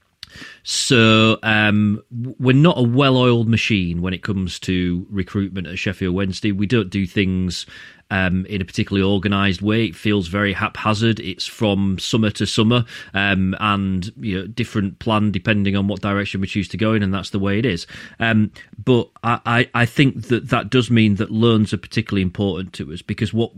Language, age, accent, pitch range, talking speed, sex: English, 30-49, British, 95-115 Hz, 185 wpm, male